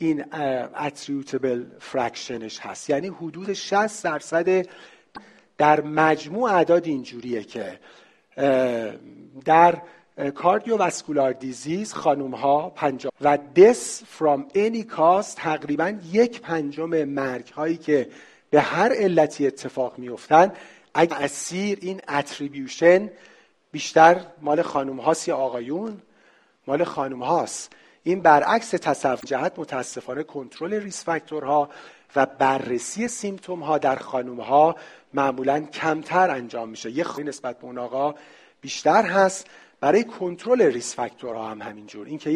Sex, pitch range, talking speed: male, 135-175 Hz, 115 wpm